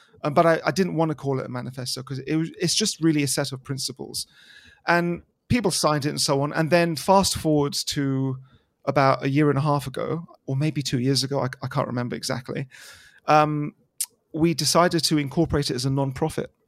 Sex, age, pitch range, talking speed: male, 40-59, 130-155 Hz, 210 wpm